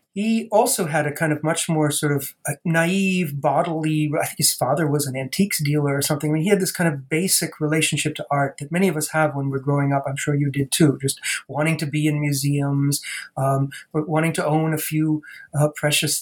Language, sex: English, male